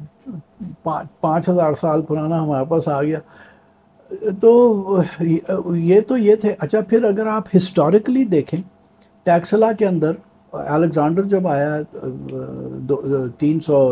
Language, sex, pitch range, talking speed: Urdu, male, 150-195 Hz, 115 wpm